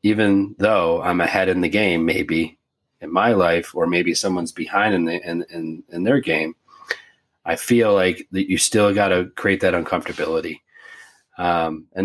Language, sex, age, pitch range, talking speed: English, male, 30-49, 85-110 Hz, 175 wpm